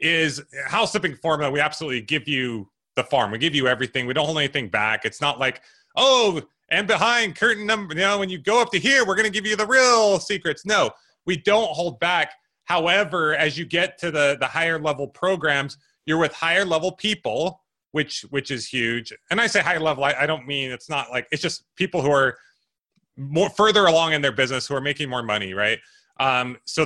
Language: English